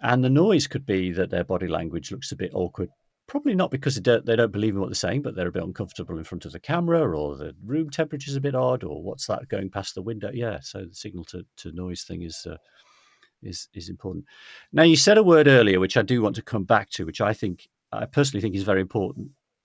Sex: male